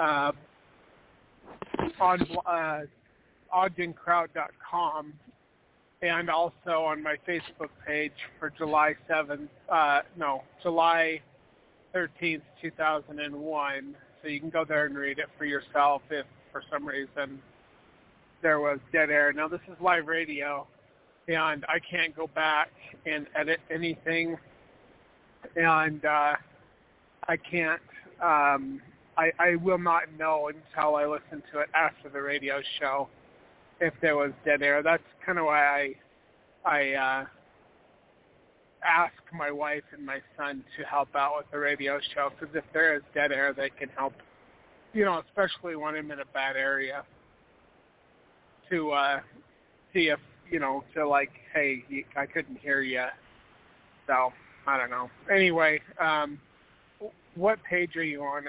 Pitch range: 140-160 Hz